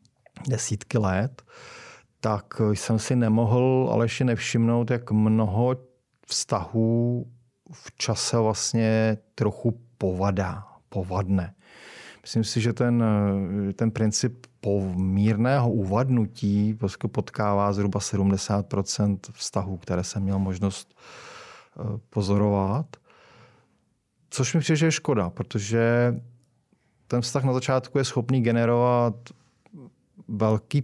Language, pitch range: Czech, 100-120 Hz